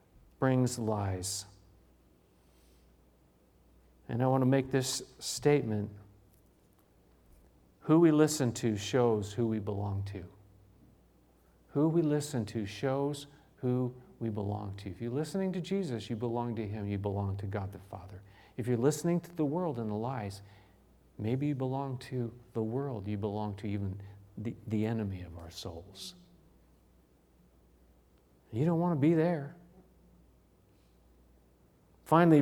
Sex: male